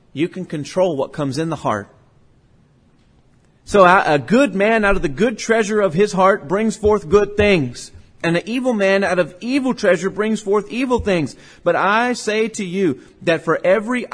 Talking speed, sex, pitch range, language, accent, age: 185 wpm, male, 145-215 Hz, English, American, 40-59